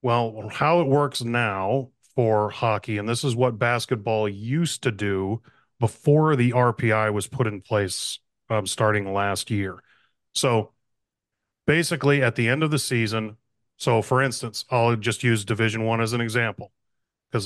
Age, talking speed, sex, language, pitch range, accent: 30-49, 160 wpm, male, English, 110-130 Hz, American